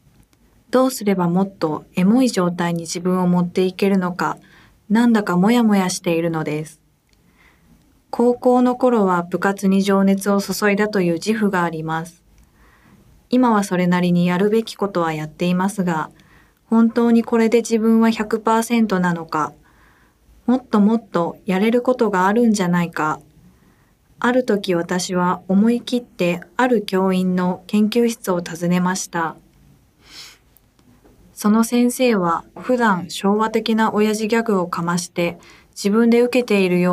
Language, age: Japanese, 20-39